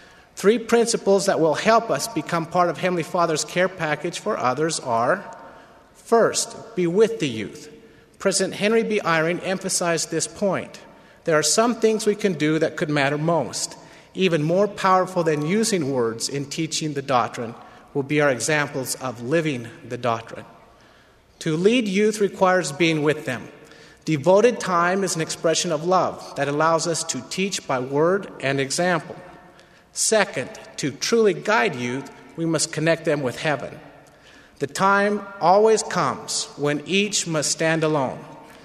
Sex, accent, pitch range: male, American, 145-190 Hz